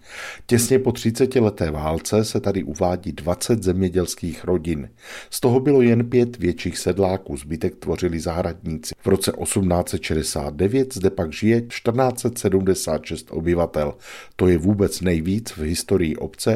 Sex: male